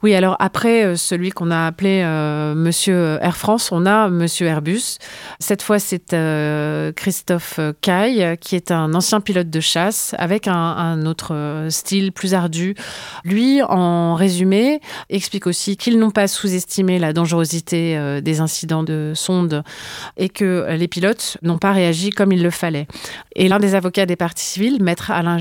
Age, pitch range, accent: 30-49, 165-195 Hz, French